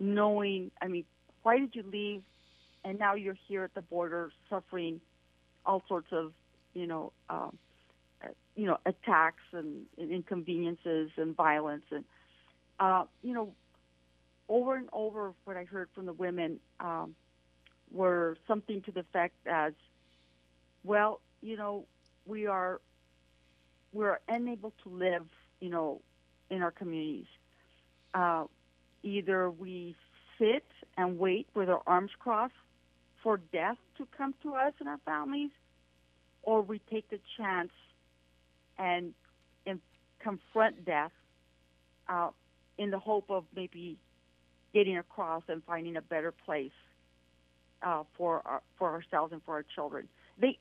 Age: 50-69